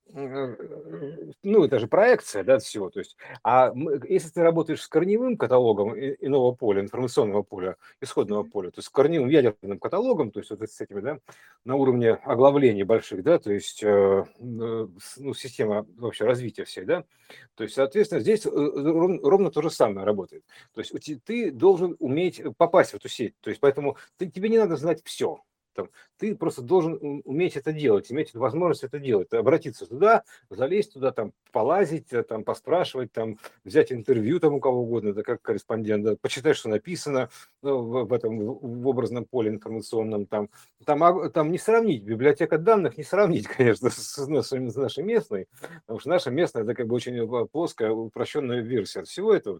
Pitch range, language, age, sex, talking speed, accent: 115-190 Hz, Russian, 50-69, male, 175 wpm, native